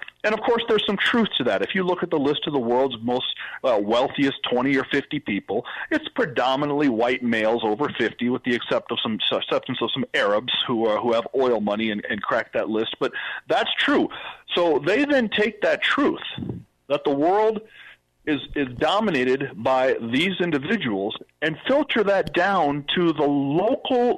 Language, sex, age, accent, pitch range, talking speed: English, male, 40-59, American, 135-215 Hz, 185 wpm